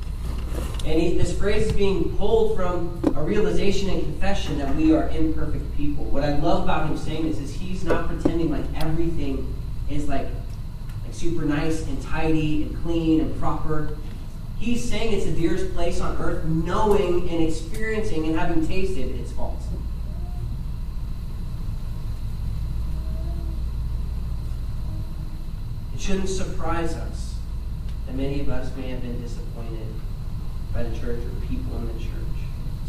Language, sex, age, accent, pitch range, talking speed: English, male, 30-49, American, 110-155 Hz, 140 wpm